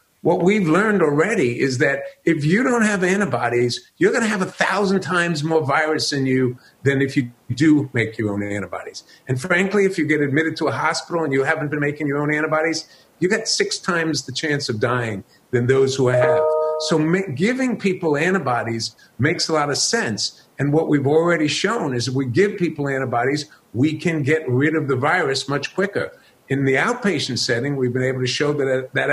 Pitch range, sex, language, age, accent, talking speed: 125-160 Hz, male, English, 50-69, American, 205 wpm